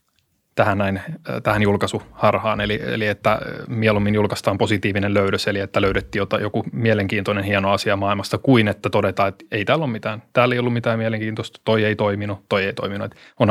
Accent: native